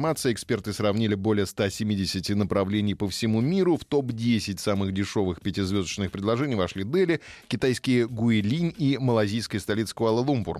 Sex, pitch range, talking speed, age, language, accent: male, 100-120 Hz, 125 wpm, 20-39, Russian, native